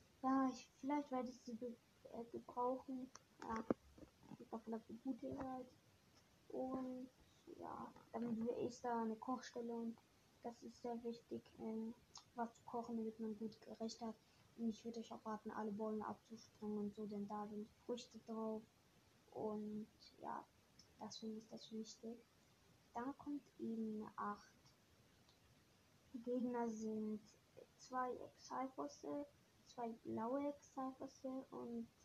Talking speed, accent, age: 130 wpm, German, 20-39